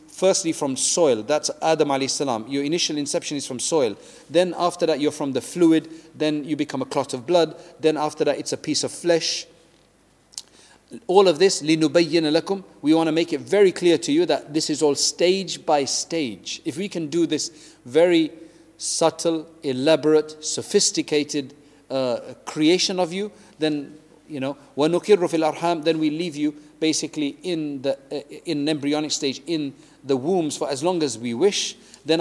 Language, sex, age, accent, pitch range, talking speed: English, male, 40-59, South African, 150-175 Hz, 170 wpm